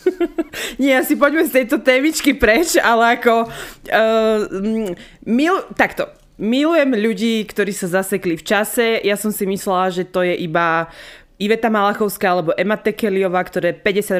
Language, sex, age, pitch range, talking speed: Slovak, female, 20-39, 180-235 Hz, 145 wpm